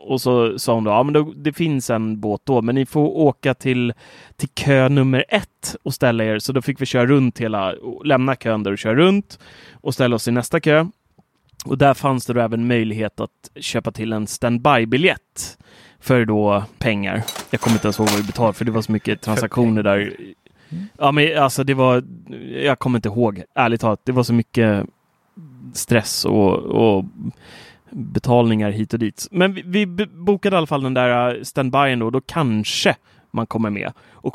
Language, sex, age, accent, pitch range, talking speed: Swedish, male, 30-49, native, 110-145 Hz, 200 wpm